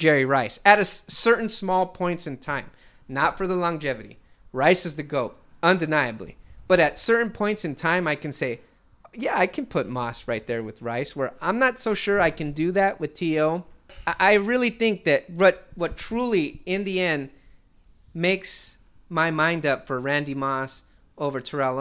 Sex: male